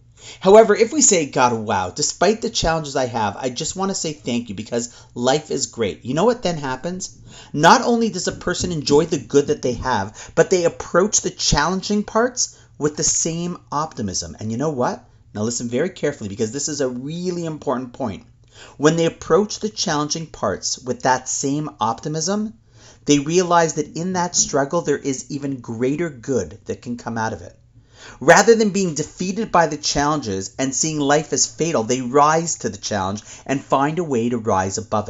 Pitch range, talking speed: 125-185 Hz, 195 wpm